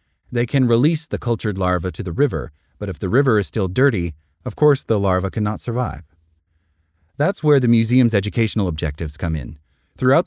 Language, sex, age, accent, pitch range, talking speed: English, male, 30-49, American, 90-120 Hz, 180 wpm